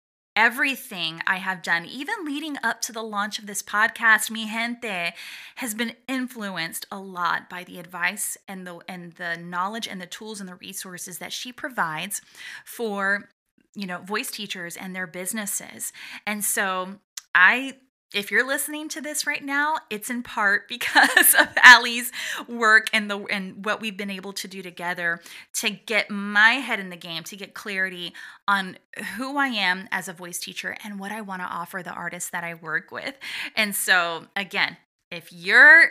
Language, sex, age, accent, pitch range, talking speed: English, female, 20-39, American, 180-245 Hz, 175 wpm